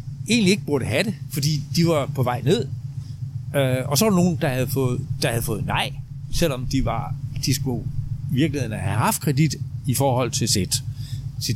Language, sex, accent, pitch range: Danish, male, native, 120-150 Hz